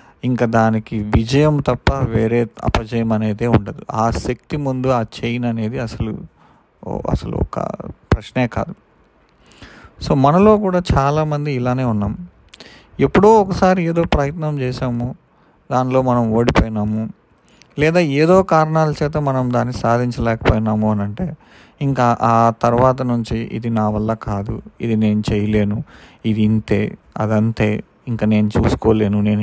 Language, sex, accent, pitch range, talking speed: Telugu, male, native, 110-125 Hz, 120 wpm